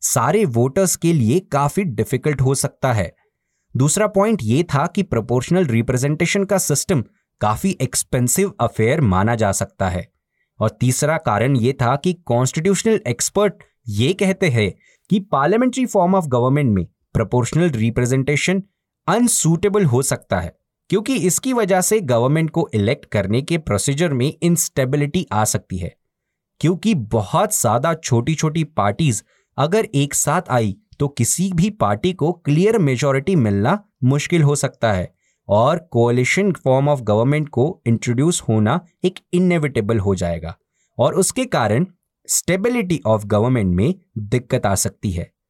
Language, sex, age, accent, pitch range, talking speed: Hindi, male, 20-39, native, 120-185 Hz, 140 wpm